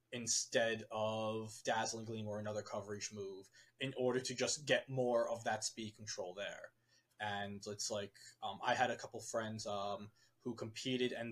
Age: 20-39